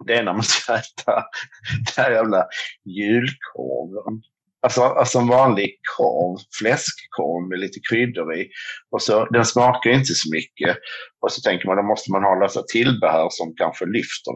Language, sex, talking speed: Swedish, male, 175 wpm